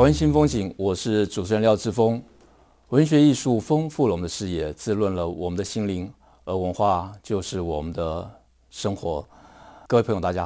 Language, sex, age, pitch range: Chinese, male, 50-69, 85-105 Hz